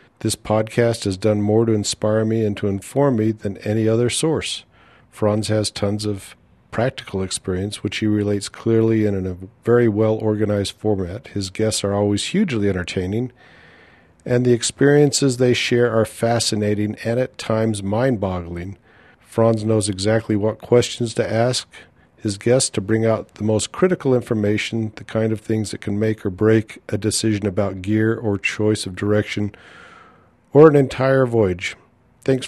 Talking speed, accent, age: 160 wpm, American, 50-69